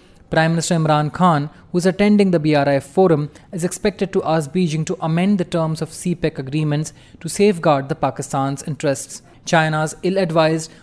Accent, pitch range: Indian, 145-180 Hz